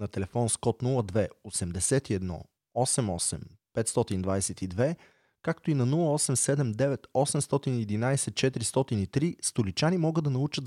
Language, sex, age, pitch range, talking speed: Bulgarian, male, 30-49, 100-140 Hz, 65 wpm